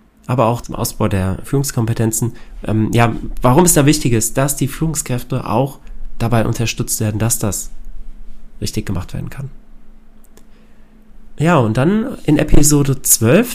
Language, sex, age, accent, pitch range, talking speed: German, male, 30-49, German, 115-155 Hz, 140 wpm